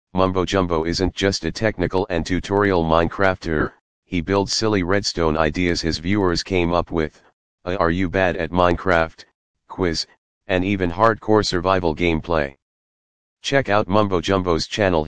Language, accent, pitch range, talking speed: English, American, 85-100 Hz, 145 wpm